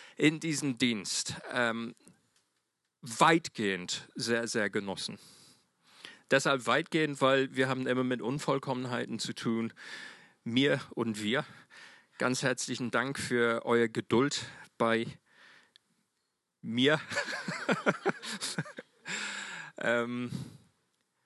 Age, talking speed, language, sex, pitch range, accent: 40-59, 85 wpm, German, male, 115-145 Hz, German